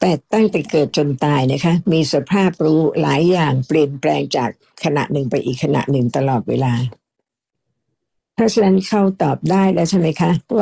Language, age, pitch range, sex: Thai, 60-79, 145-185 Hz, female